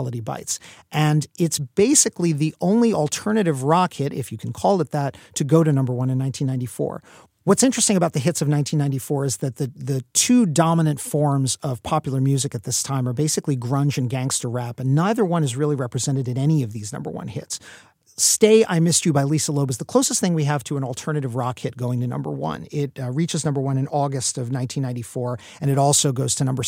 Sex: male